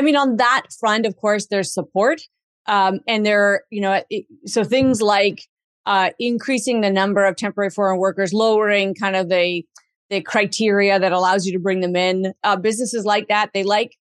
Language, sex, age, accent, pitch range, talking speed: English, female, 30-49, American, 190-230 Hz, 190 wpm